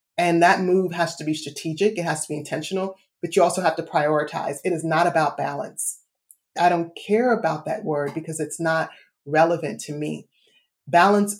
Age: 30-49